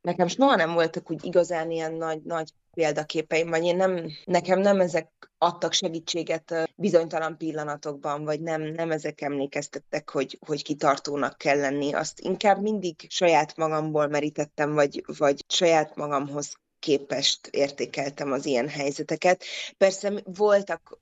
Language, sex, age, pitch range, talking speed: Hungarian, female, 20-39, 150-170 Hz, 135 wpm